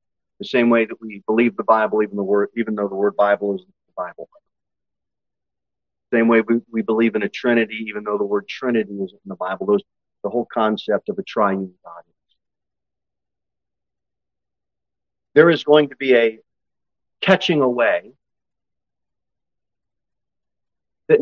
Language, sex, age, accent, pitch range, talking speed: English, male, 40-59, American, 105-155 Hz, 155 wpm